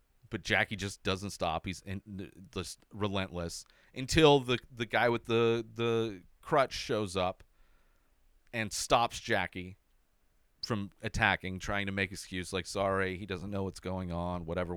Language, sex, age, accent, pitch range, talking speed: English, male, 30-49, American, 95-160 Hz, 145 wpm